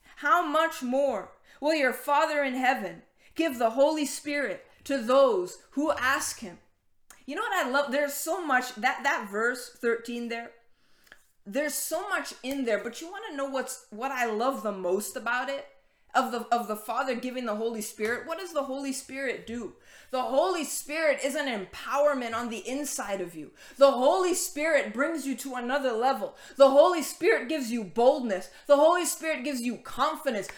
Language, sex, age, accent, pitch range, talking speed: English, female, 20-39, American, 255-320 Hz, 185 wpm